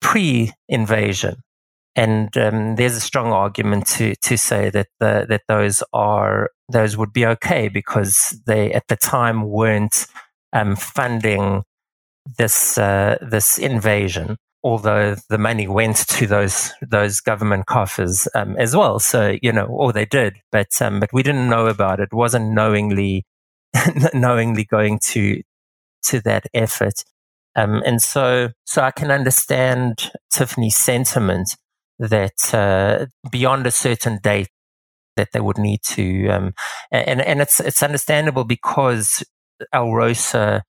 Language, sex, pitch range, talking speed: English, male, 100-120 Hz, 140 wpm